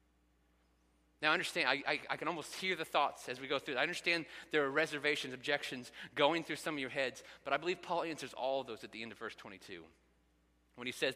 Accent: American